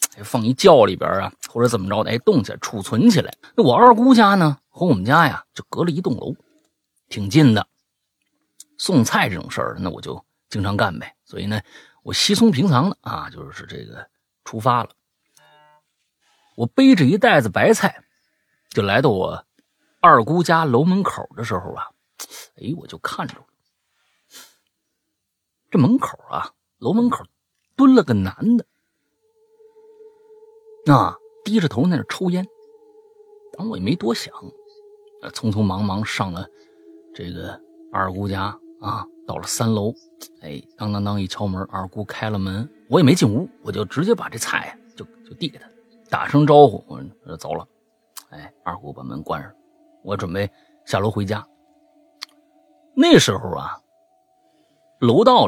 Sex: male